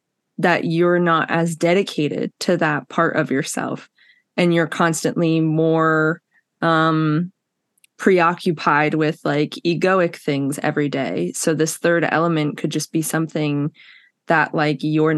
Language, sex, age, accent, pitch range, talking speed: English, female, 20-39, American, 155-185 Hz, 130 wpm